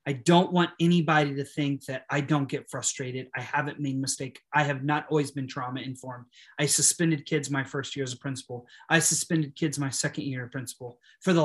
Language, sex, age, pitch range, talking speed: English, male, 30-49, 140-160 Hz, 220 wpm